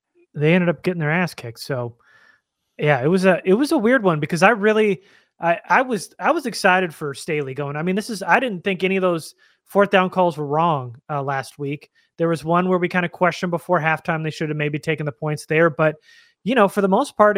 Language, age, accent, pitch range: English, 30-49, American, 140-185 Hz